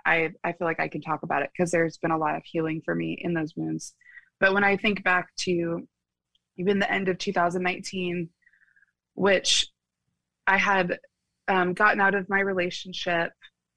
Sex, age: female, 20-39